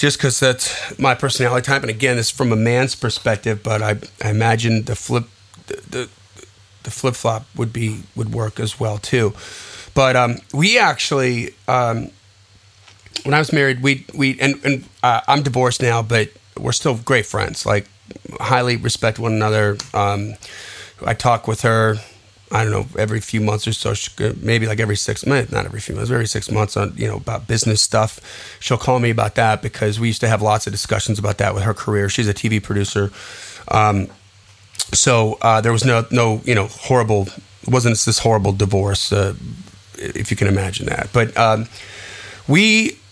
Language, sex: English, male